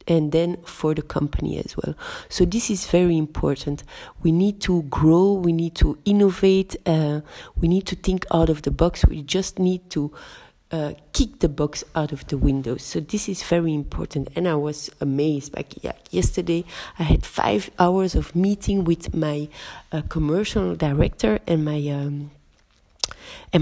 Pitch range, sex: 155-190 Hz, female